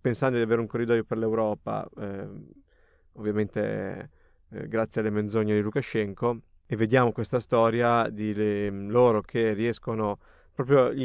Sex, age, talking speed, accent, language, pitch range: male, 30-49, 140 wpm, native, Italian, 110-125 Hz